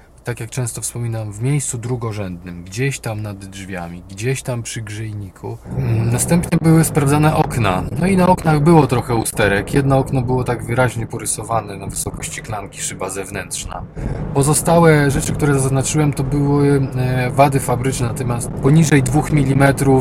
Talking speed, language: 145 wpm, Polish